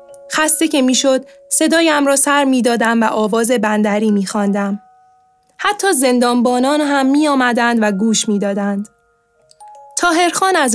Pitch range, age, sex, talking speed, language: 210-285 Hz, 10-29, female, 110 wpm, Persian